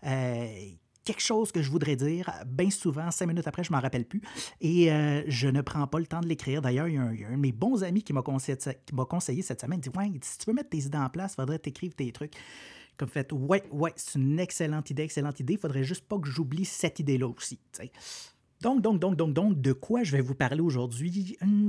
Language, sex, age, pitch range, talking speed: French, male, 30-49, 130-180 Hz, 255 wpm